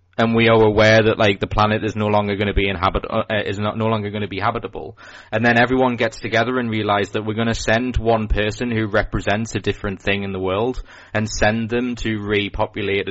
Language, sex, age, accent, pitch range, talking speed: English, male, 20-39, British, 100-115 Hz, 235 wpm